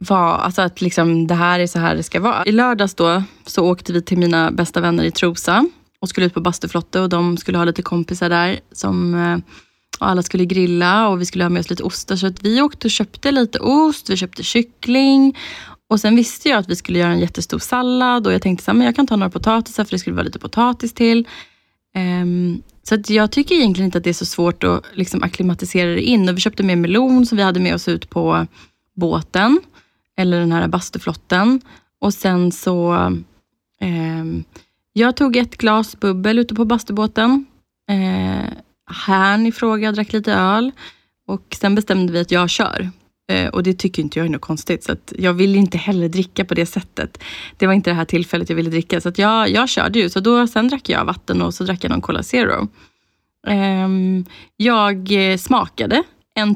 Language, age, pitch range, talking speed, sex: Swedish, 20-39, 175-220 Hz, 210 wpm, female